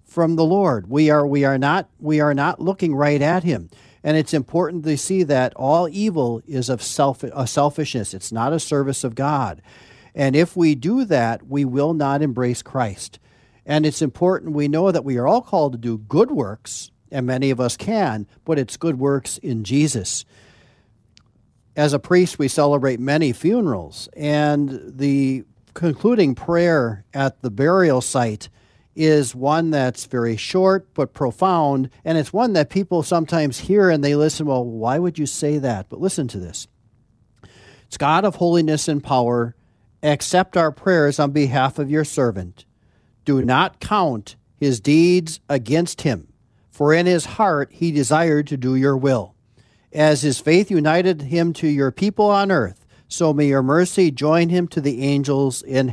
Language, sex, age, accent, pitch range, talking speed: English, male, 50-69, American, 125-160 Hz, 175 wpm